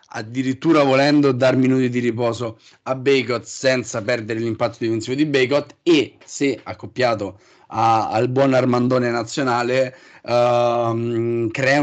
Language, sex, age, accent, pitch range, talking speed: Italian, male, 30-49, native, 125-145 Hz, 120 wpm